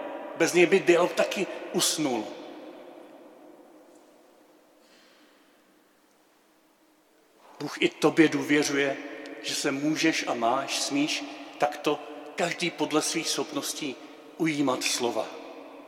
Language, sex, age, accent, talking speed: Czech, male, 50-69, native, 85 wpm